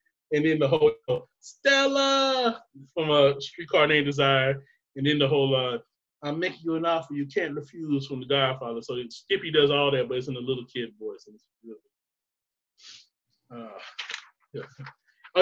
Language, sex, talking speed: English, male, 180 wpm